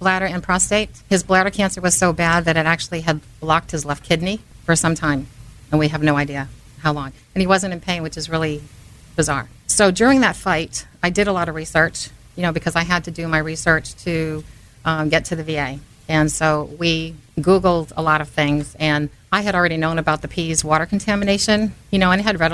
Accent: American